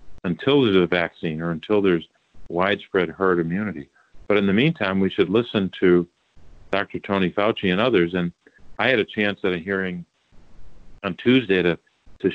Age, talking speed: 50-69, 170 wpm